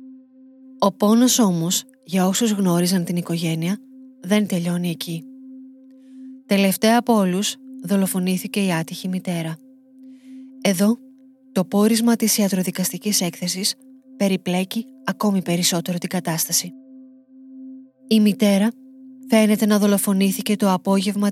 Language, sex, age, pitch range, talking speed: Greek, female, 20-39, 190-235 Hz, 100 wpm